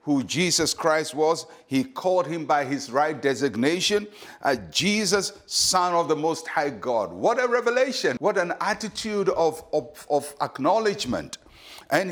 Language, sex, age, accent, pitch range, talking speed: English, male, 60-79, Nigerian, 160-220 Hz, 145 wpm